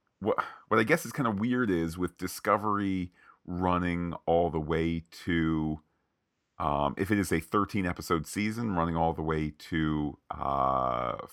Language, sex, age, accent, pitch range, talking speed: English, male, 40-59, American, 80-100 Hz, 160 wpm